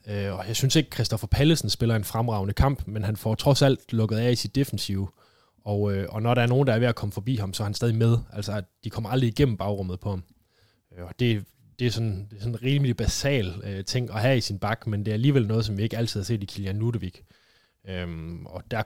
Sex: male